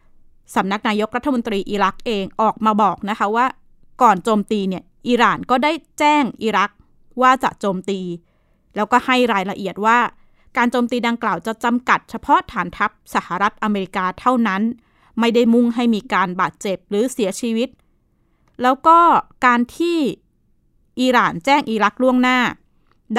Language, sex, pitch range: Thai, female, 195-245 Hz